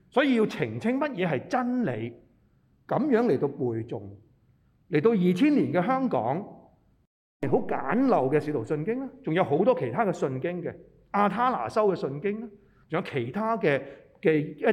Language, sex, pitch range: Chinese, male, 130-190 Hz